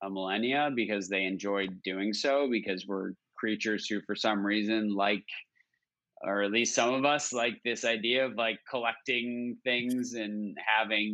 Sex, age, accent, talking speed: male, 20-39, American, 160 wpm